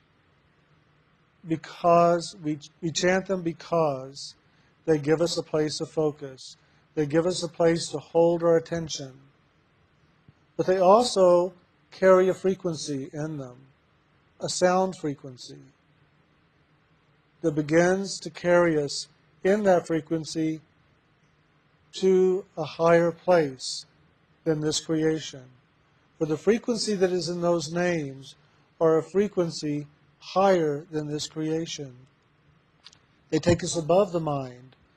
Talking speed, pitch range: 120 wpm, 150-175 Hz